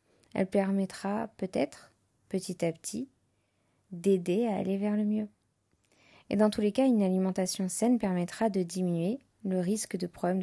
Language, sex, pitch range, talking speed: French, female, 180-215 Hz, 155 wpm